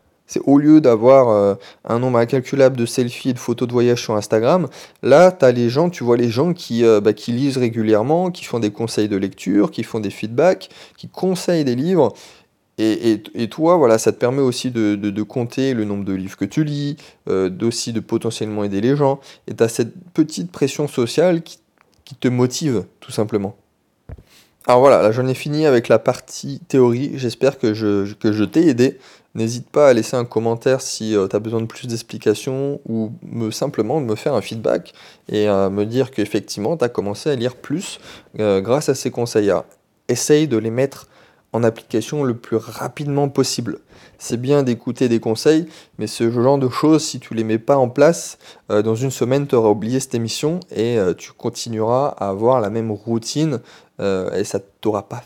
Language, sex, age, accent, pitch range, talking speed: French, male, 20-39, French, 110-140 Hz, 205 wpm